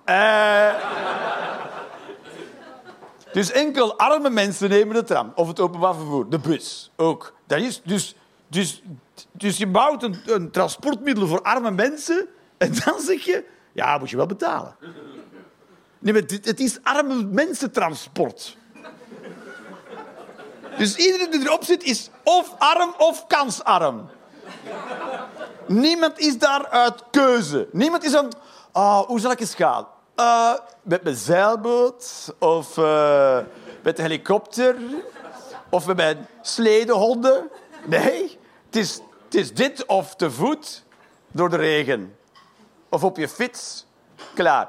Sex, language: male, Dutch